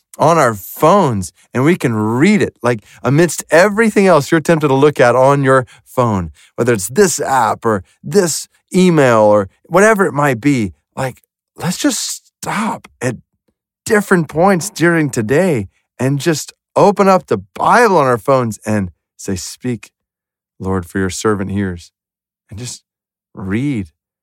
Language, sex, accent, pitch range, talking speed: English, male, American, 105-135 Hz, 150 wpm